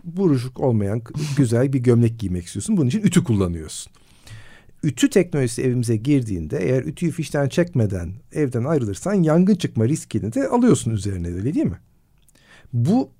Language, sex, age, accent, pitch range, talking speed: Turkish, male, 50-69, native, 115-150 Hz, 140 wpm